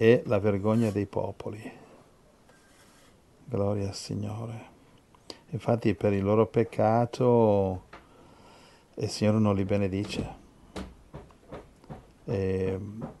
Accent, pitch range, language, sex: native, 100-115 Hz, Italian, male